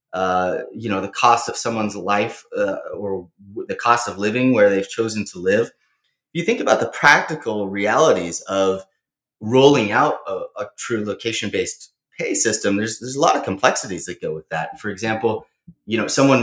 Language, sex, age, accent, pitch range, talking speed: English, male, 30-49, American, 105-140 Hz, 185 wpm